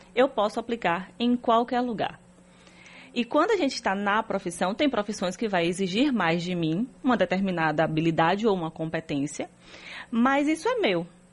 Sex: female